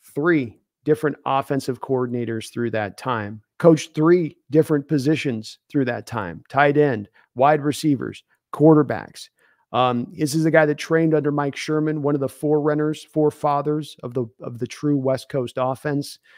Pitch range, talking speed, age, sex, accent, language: 140-155 Hz, 155 wpm, 40-59, male, American, English